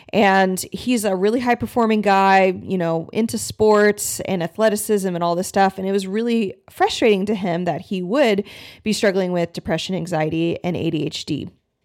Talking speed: 165 wpm